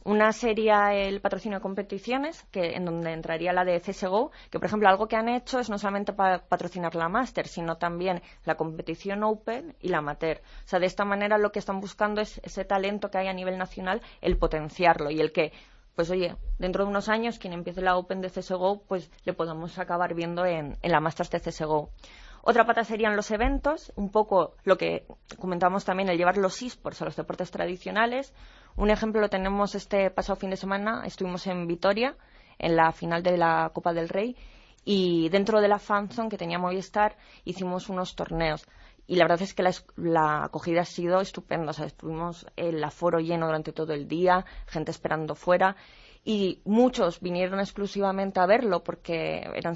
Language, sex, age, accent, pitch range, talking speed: Spanish, female, 20-39, Spanish, 175-205 Hz, 195 wpm